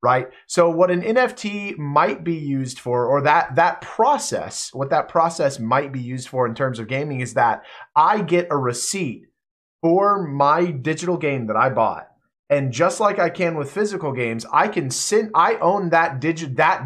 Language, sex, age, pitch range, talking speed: English, male, 30-49, 125-170 Hz, 190 wpm